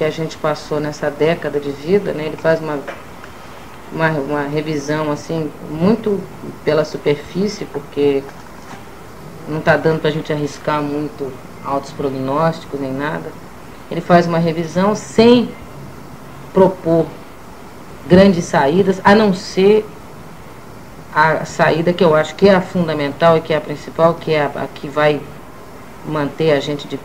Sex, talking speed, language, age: female, 145 wpm, Portuguese, 40-59